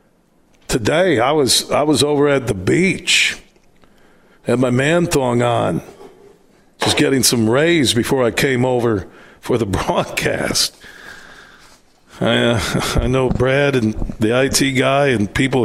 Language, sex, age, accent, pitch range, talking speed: English, male, 50-69, American, 120-140 Hz, 140 wpm